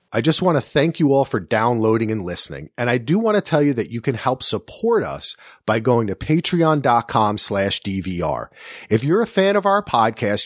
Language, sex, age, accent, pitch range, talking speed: English, male, 40-59, American, 120-175 Hz, 210 wpm